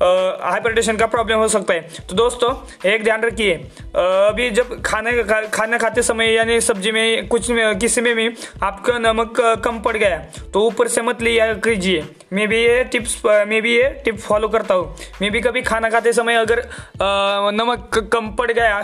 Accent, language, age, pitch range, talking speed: native, Hindi, 20-39, 200-230 Hz, 185 wpm